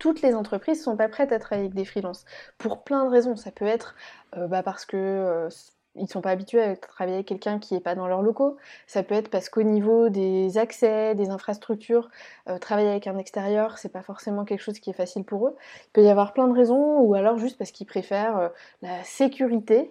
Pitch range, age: 195-245 Hz, 20-39